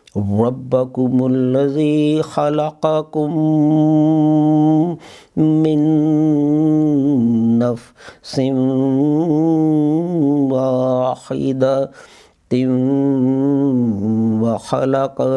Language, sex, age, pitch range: English, male, 50-69, 130-155 Hz